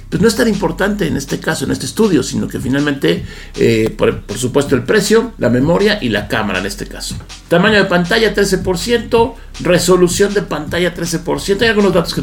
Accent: Mexican